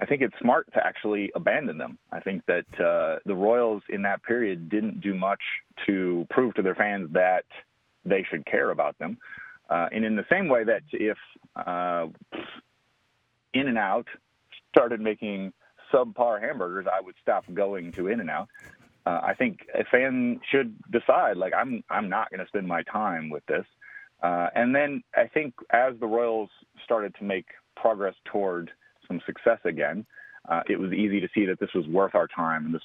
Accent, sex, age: American, male, 40-59